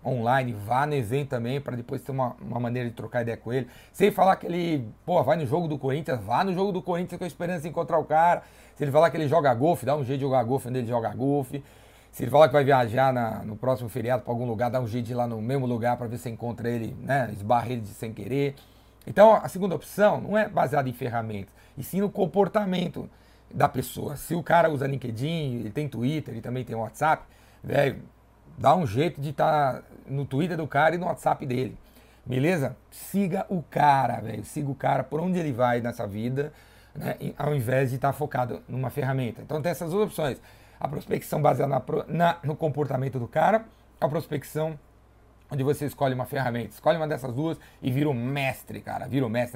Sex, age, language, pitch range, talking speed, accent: male, 40-59, Portuguese, 120-150 Hz, 225 wpm, Brazilian